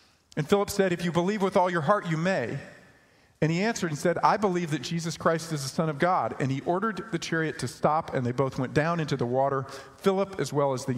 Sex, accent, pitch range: male, American, 130-165 Hz